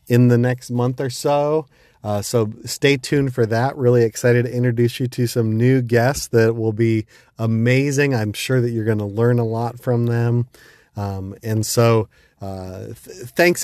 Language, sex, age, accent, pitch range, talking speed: English, male, 30-49, American, 105-120 Hz, 180 wpm